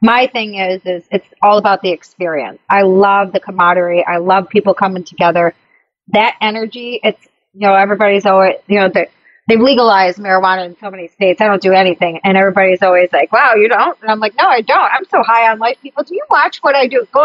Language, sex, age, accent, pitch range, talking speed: English, female, 30-49, American, 185-230 Hz, 225 wpm